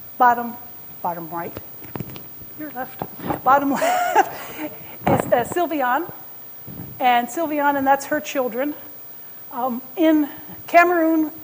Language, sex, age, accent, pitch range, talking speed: English, female, 50-69, American, 220-280 Hz, 100 wpm